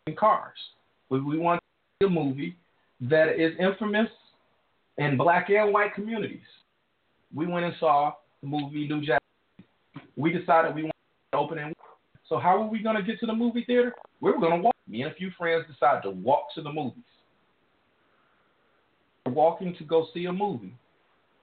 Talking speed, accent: 185 wpm, American